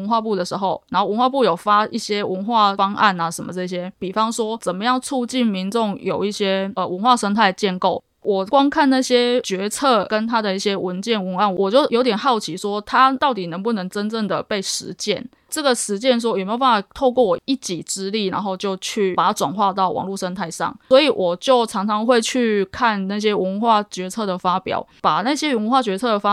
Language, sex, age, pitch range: Chinese, female, 20-39, 190-240 Hz